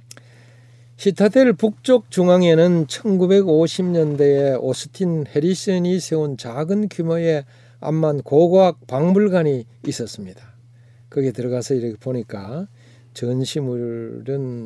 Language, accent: Korean, native